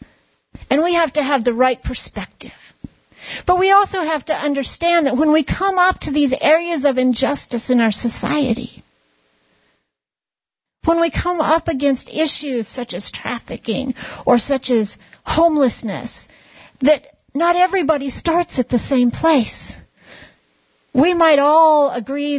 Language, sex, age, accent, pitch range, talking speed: English, female, 50-69, American, 245-310 Hz, 140 wpm